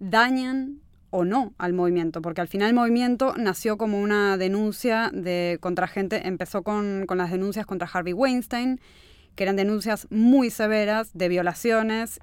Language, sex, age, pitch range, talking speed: Spanish, female, 20-39, 180-215 Hz, 155 wpm